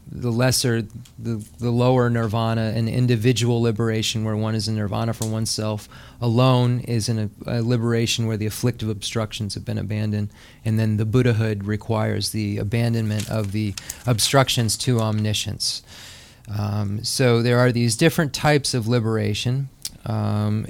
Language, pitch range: English, 110-125 Hz